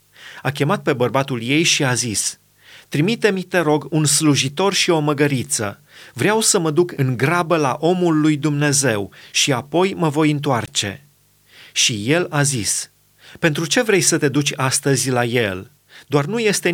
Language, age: Romanian, 30-49